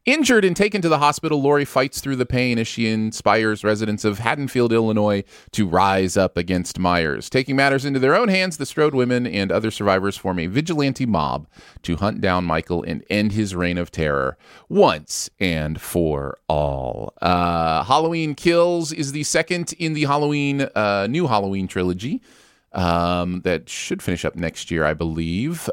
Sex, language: male, English